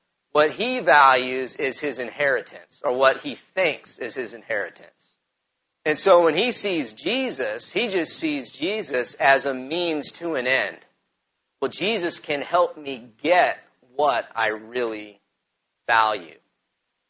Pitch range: 130-170 Hz